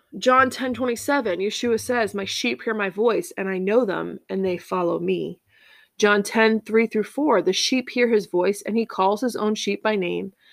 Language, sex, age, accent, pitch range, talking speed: English, female, 20-39, American, 200-240 Hz, 200 wpm